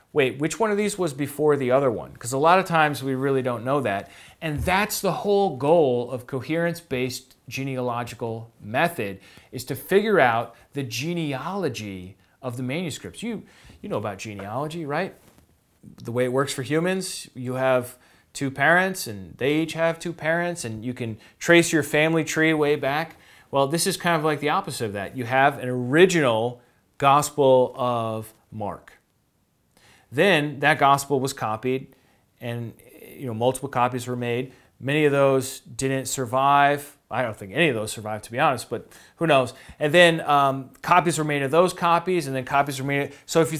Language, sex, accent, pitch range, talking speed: English, male, American, 125-160 Hz, 185 wpm